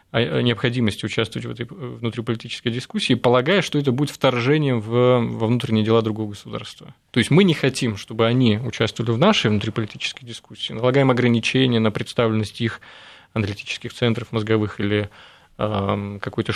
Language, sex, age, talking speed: Russian, male, 20-39, 150 wpm